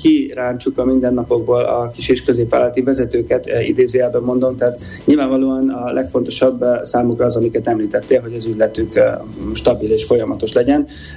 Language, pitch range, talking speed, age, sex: Hungarian, 120-140 Hz, 140 wpm, 30-49, male